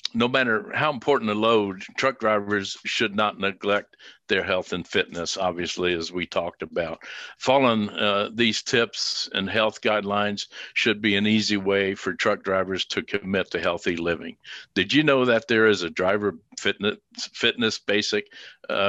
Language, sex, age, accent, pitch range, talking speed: English, male, 60-79, American, 100-115 Hz, 165 wpm